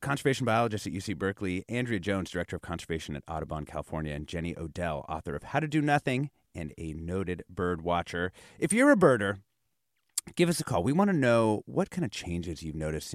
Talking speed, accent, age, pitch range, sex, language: 205 wpm, American, 30-49, 85-130 Hz, male, English